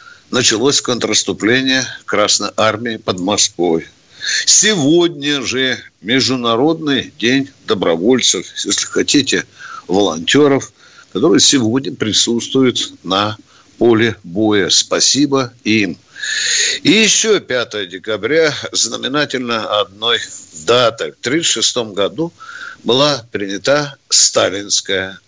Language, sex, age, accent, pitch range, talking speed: Russian, male, 60-79, native, 115-175 Hz, 85 wpm